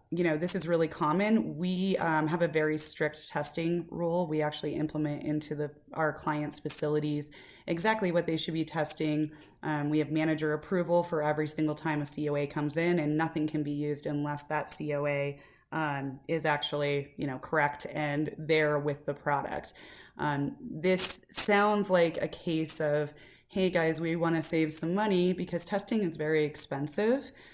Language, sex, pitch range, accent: English, female, 150-175 Hz, American